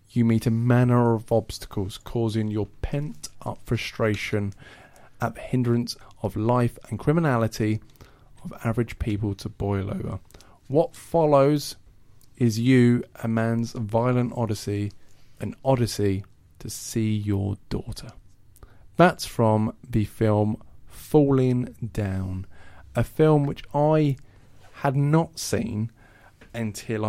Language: English